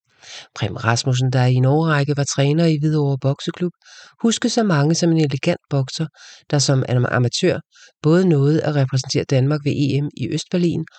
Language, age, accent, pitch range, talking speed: English, 40-59, Danish, 135-160 Hz, 160 wpm